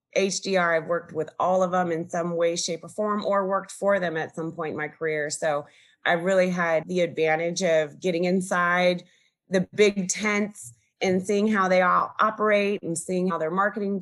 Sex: female